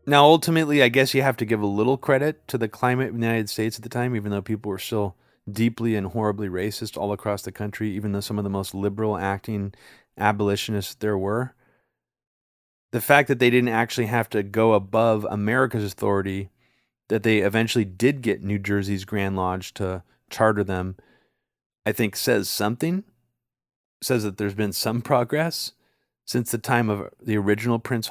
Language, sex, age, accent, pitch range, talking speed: English, male, 30-49, American, 105-130 Hz, 185 wpm